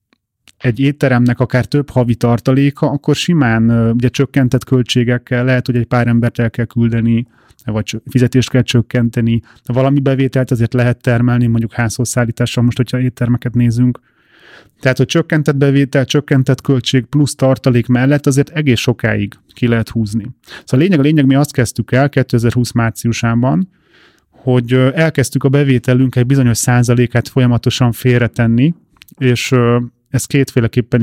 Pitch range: 120-135 Hz